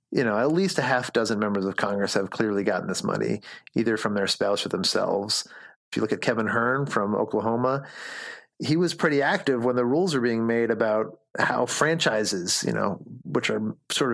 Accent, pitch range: American, 105-130 Hz